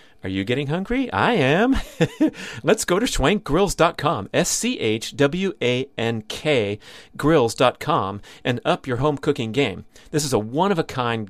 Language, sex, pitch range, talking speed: English, male, 115-155 Hz, 135 wpm